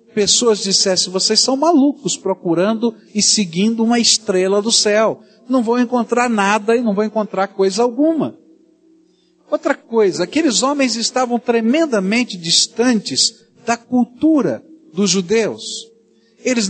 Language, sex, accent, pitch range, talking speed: Portuguese, male, Brazilian, 180-245 Hz, 120 wpm